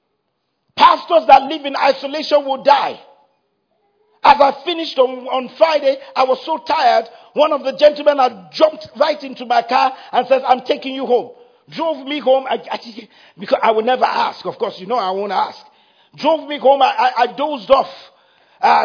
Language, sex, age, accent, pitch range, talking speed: English, male, 50-69, Nigerian, 255-300 Hz, 190 wpm